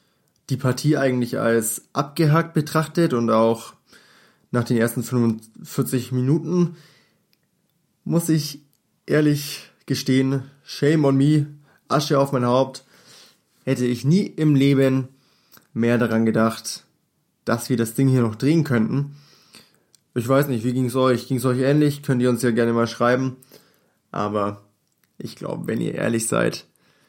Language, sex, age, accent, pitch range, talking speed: German, male, 20-39, German, 120-155 Hz, 145 wpm